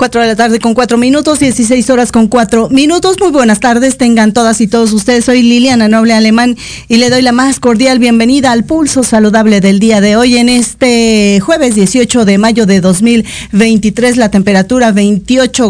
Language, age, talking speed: Spanish, 40-59, 195 wpm